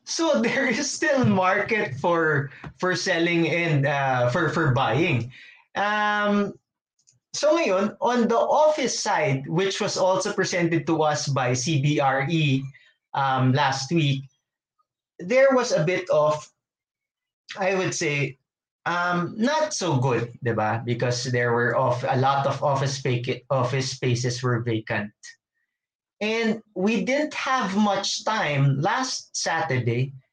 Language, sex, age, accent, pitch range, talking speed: English, male, 20-39, Filipino, 130-200 Hz, 130 wpm